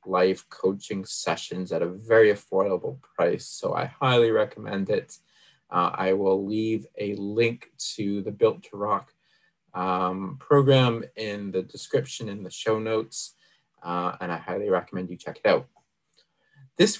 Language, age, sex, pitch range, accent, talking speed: English, 20-39, male, 100-135 Hz, American, 150 wpm